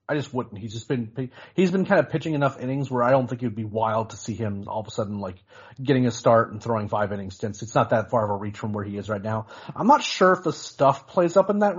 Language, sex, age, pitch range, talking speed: English, male, 30-49, 105-130 Hz, 305 wpm